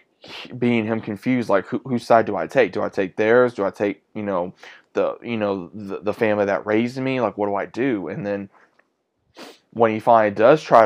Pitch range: 100-115 Hz